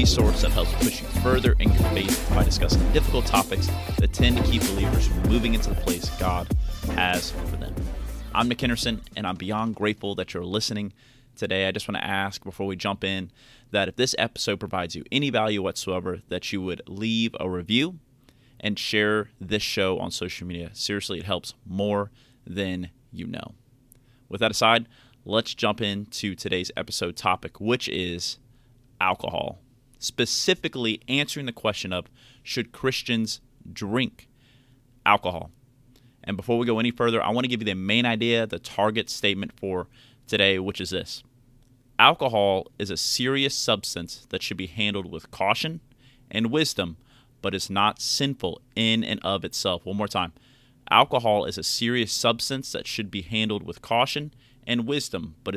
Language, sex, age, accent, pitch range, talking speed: English, male, 30-49, American, 95-125 Hz, 170 wpm